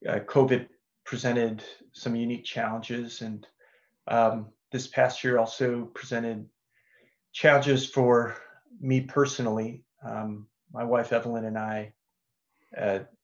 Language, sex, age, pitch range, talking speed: English, male, 30-49, 110-125 Hz, 110 wpm